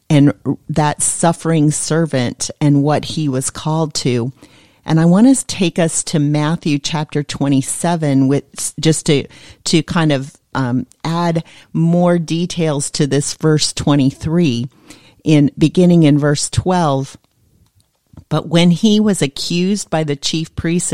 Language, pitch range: English, 140-170 Hz